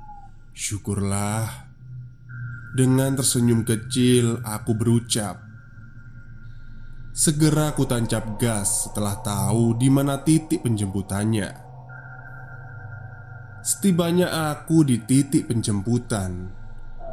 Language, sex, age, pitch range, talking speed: Indonesian, male, 20-39, 110-135 Hz, 70 wpm